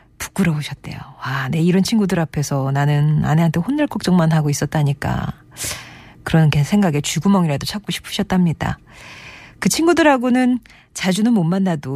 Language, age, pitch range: Korean, 40-59, 155-225 Hz